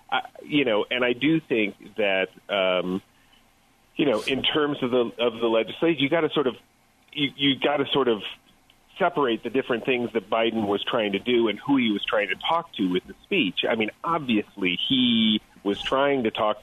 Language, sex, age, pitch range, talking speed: English, male, 40-59, 105-135 Hz, 210 wpm